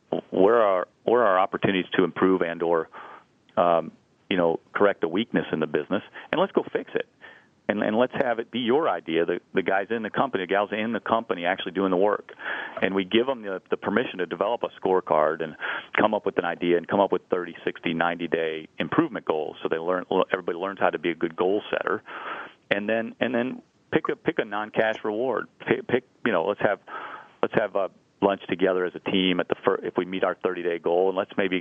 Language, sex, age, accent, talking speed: English, male, 40-59, American, 230 wpm